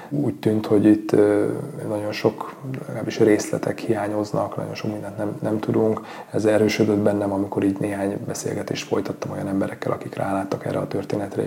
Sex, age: male, 30-49